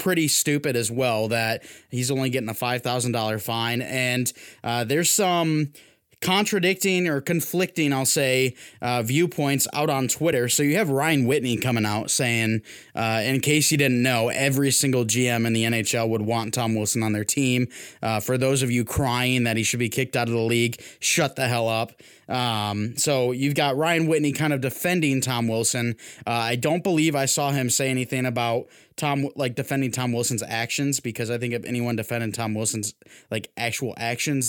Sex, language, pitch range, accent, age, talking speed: male, English, 120-155 Hz, American, 20-39, 190 wpm